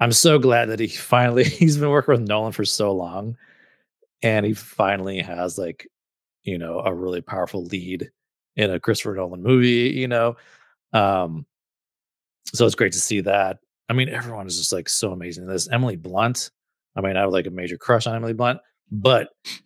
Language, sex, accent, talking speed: English, male, American, 190 wpm